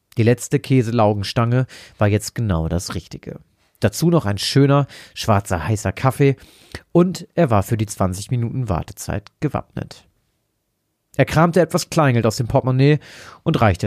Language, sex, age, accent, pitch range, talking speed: German, male, 40-59, German, 100-130 Hz, 145 wpm